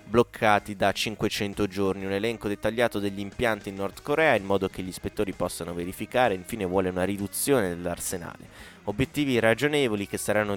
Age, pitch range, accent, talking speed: 20-39, 95-110 Hz, native, 160 wpm